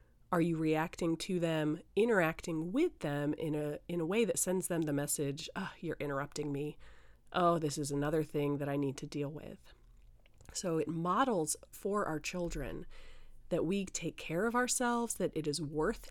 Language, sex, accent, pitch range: English, female, American, 155-200 Hz